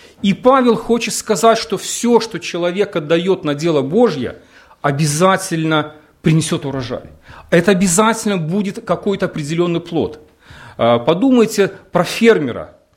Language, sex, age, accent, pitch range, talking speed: Russian, male, 40-59, native, 165-220 Hz, 110 wpm